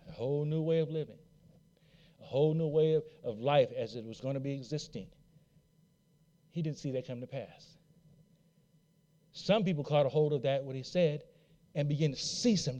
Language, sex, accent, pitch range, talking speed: English, male, American, 160-225 Hz, 195 wpm